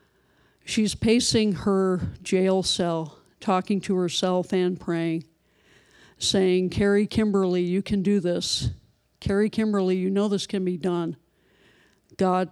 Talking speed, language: 125 wpm, English